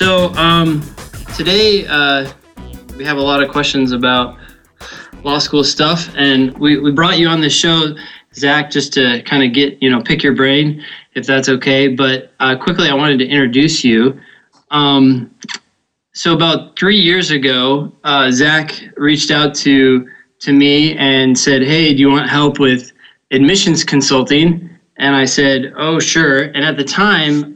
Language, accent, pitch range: English, American, 130-150 Hz